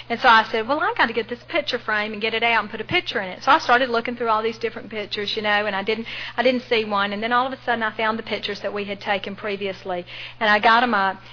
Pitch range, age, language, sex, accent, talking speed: 190-225 Hz, 50-69, English, female, American, 320 wpm